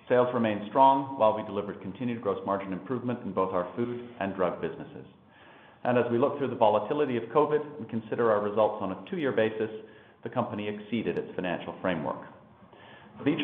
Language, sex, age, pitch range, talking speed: English, male, 40-59, 105-130 Hz, 190 wpm